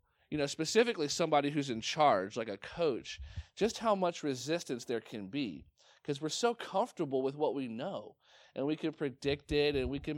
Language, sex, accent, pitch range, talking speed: English, male, American, 135-160 Hz, 195 wpm